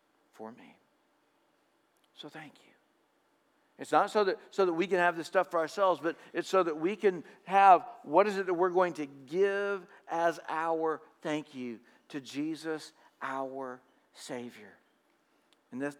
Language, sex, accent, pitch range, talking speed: English, male, American, 155-190 Hz, 160 wpm